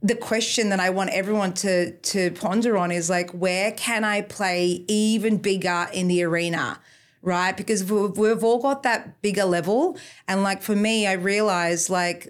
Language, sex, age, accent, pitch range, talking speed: English, female, 30-49, Australian, 200-245 Hz, 175 wpm